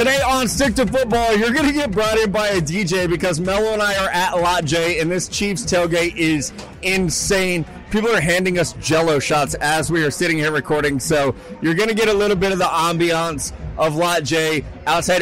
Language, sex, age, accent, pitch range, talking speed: English, male, 30-49, American, 160-195 Hz, 215 wpm